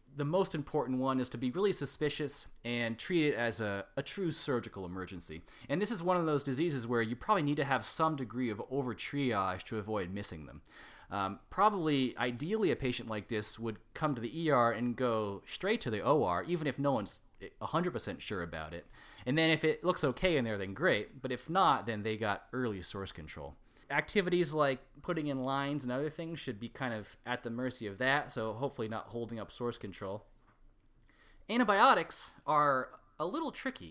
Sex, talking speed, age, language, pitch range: male, 200 wpm, 20-39, English, 110-150 Hz